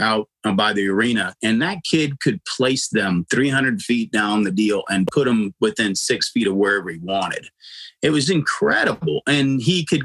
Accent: American